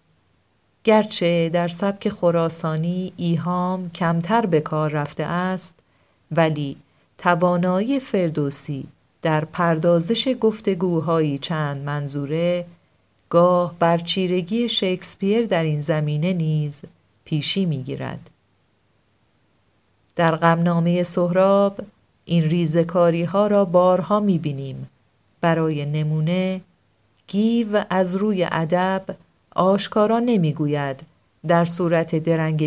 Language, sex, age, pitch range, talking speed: Persian, female, 40-59, 150-180 Hz, 85 wpm